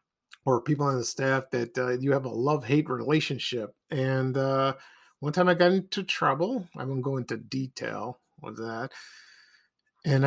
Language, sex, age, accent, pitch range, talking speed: English, male, 50-69, American, 135-175 Hz, 165 wpm